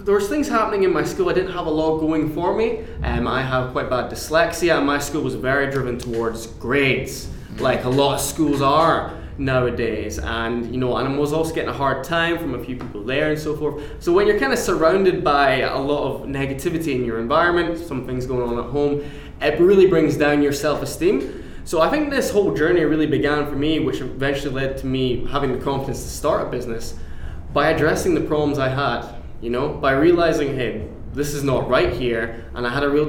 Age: 10-29